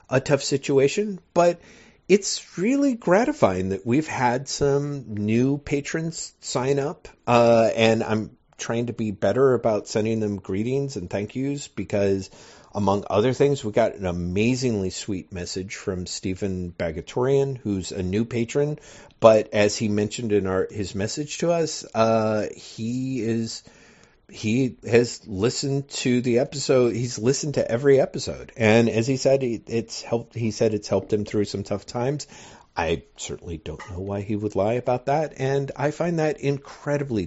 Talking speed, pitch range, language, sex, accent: 160 wpm, 100-135 Hz, English, male, American